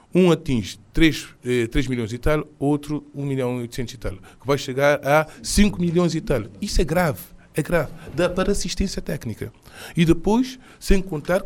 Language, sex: Portuguese, male